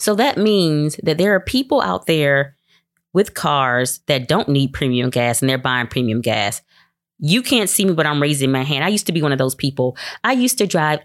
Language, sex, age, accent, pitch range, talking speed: English, female, 20-39, American, 135-175 Hz, 230 wpm